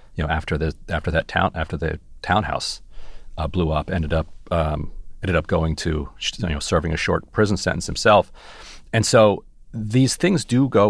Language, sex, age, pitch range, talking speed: English, male, 40-59, 80-95 Hz, 185 wpm